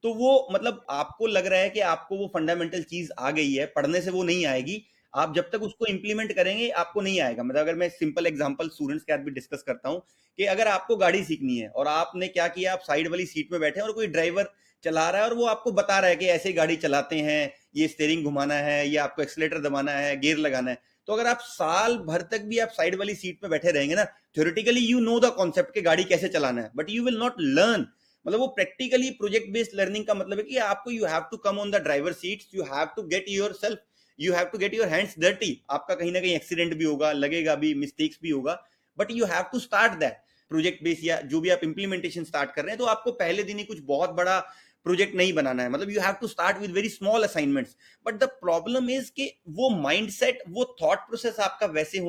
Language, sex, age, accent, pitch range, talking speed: English, male, 30-49, Indian, 160-225 Hz, 190 wpm